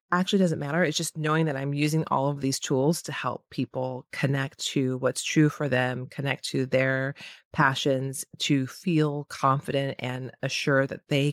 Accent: American